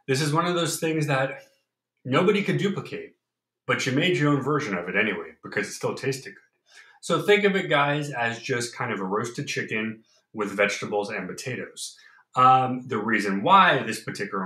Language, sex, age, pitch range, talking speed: English, male, 30-49, 120-160 Hz, 190 wpm